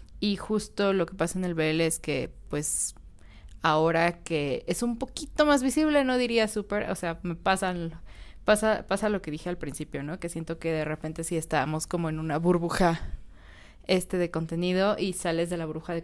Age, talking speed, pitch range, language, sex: 20-39, 200 wpm, 165-210 Hz, Spanish, female